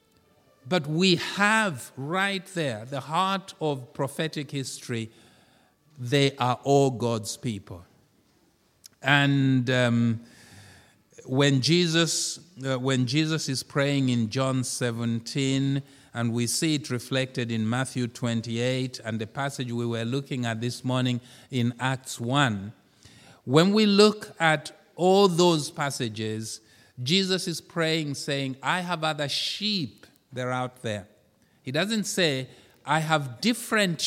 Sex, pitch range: male, 120-160 Hz